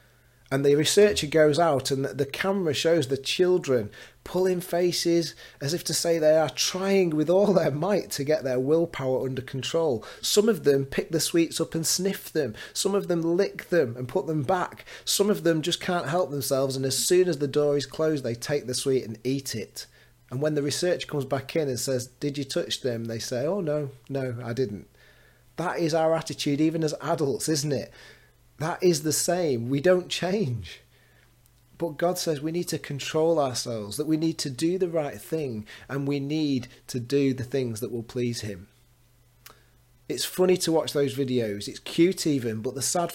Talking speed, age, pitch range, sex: 205 wpm, 30-49, 120-165 Hz, male